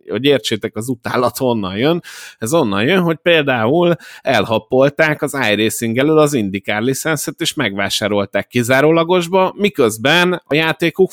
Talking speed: 130 wpm